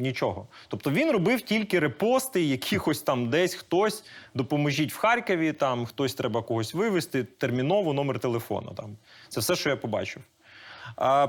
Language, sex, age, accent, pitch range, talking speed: Ukrainian, male, 30-49, native, 135-200 Hz, 145 wpm